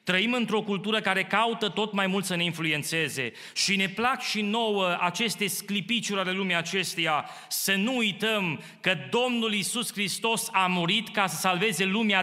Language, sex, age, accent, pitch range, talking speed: Romanian, male, 30-49, native, 160-220 Hz, 165 wpm